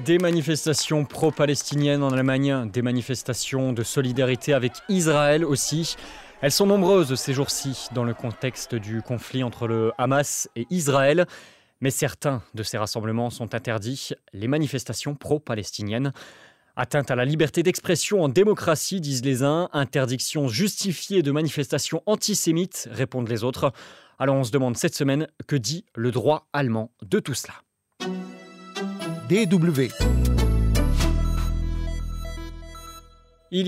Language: French